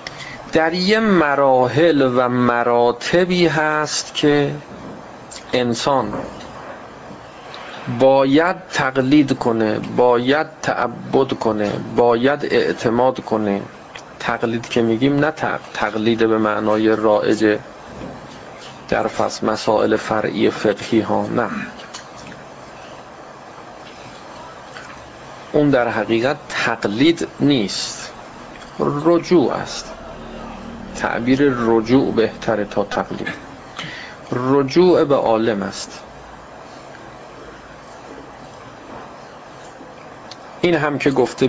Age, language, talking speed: 40-59, Persian, 75 wpm